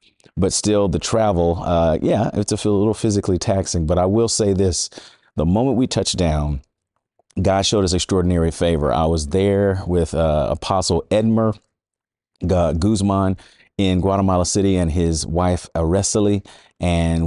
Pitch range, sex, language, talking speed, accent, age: 85-100 Hz, male, English, 155 wpm, American, 40-59